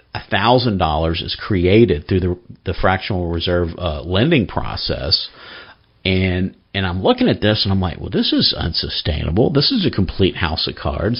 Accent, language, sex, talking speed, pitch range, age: American, English, male, 175 wpm, 95-125 Hz, 50-69